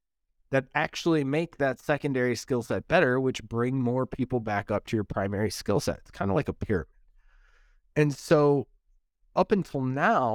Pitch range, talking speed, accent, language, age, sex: 120-150 Hz, 175 wpm, American, English, 20-39, male